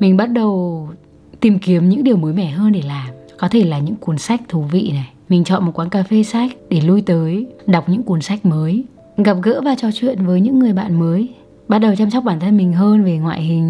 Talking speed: 250 wpm